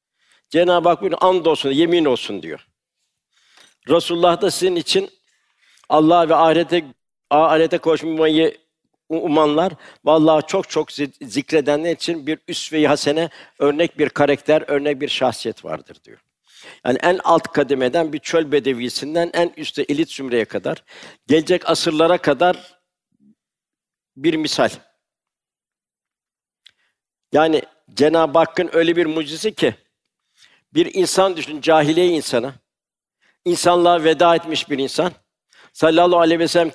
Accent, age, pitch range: native, 60-79, 150-175 Hz